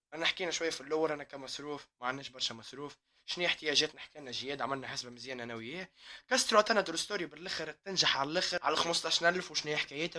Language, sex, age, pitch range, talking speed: Arabic, male, 20-39, 140-180 Hz, 175 wpm